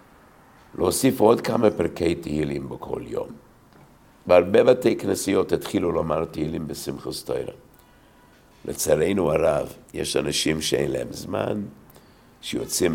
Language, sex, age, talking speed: English, male, 60-79, 100 wpm